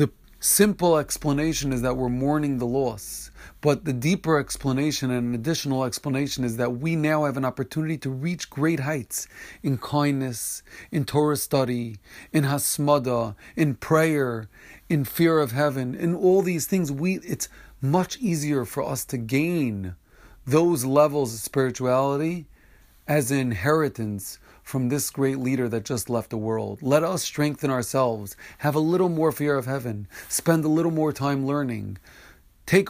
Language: English